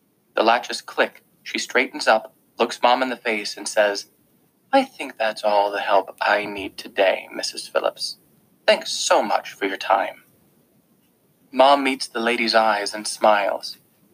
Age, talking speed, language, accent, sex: 30-49, 155 wpm, English, American, male